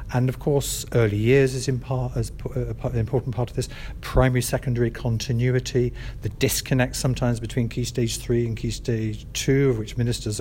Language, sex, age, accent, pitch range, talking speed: English, male, 50-69, British, 115-140 Hz, 160 wpm